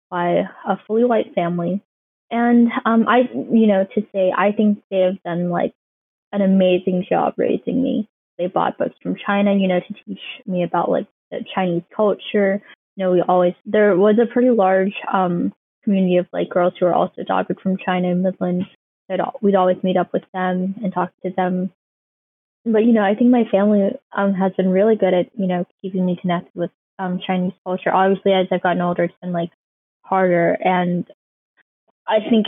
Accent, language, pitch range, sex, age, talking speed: American, English, 180-210 Hz, female, 10-29, 190 wpm